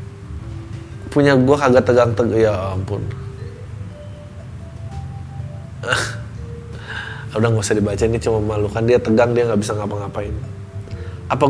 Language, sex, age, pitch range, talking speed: Indonesian, male, 20-39, 110-140 Hz, 115 wpm